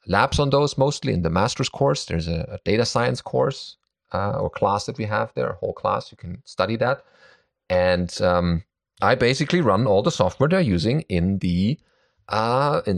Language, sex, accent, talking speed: English, male, German, 195 wpm